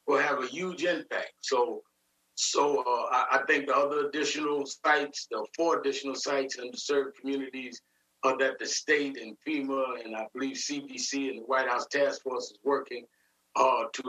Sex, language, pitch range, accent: male, English, 135-185 Hz, American